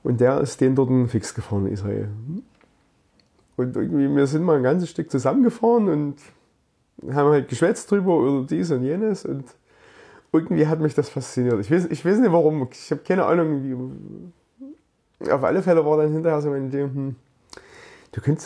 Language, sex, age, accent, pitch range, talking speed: German, male, 30-49, German, 120-160 Hz, 185 wpm